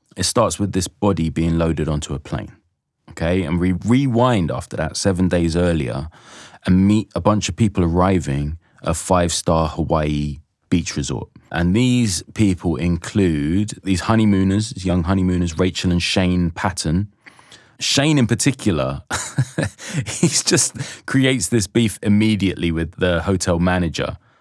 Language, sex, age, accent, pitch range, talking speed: English, male, 20-39, British, 85-110 Hz, 145 wpm